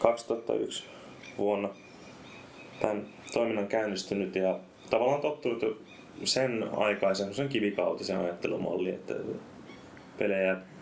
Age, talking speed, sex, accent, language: 20-39, 80 wpm, male, native, Finnish